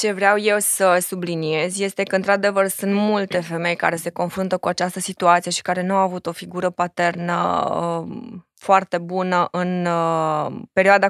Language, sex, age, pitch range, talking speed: Romanian, female, 20-39, 175-200 Hz, 155 wpm